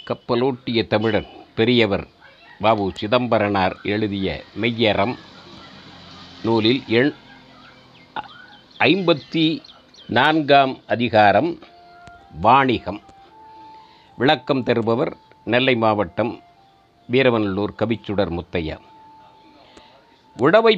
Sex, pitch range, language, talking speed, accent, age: male, 115-175 Hz, Tamil, 60 wpm, native, 50-69